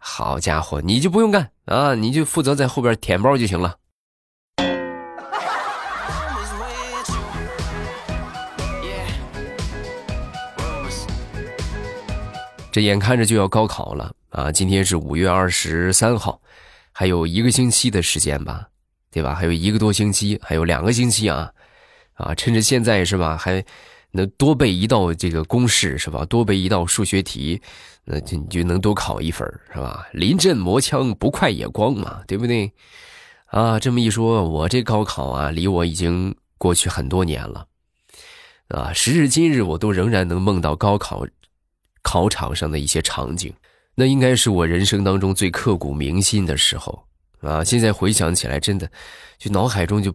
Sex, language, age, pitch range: male, Chinese, 20-39, 85-110 Hz